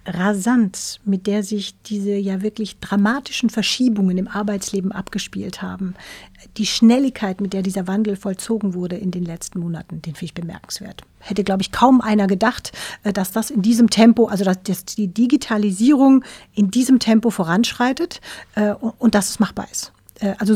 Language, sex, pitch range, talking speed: German, female, 195-225 Hz, 160 wpm